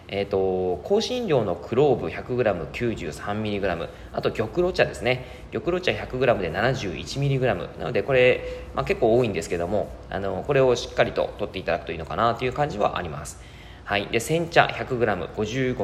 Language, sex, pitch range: Japanese, male, 95-145 Hz